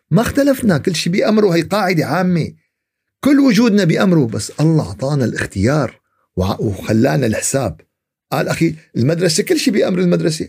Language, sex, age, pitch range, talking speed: Arabic, male, 50-69, 120-180 Hz, 135 wpm